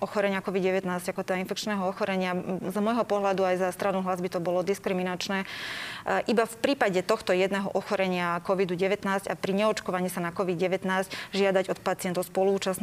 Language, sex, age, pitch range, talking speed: Slovak, female, 20-39, 190-215 Hz, 160 wpm